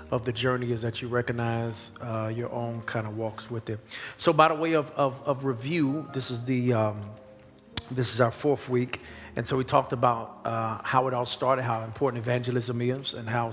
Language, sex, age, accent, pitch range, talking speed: English, male, 40-59, American, 115-130 Hz, 215 wpm